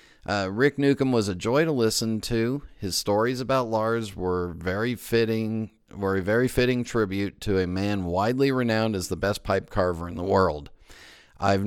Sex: male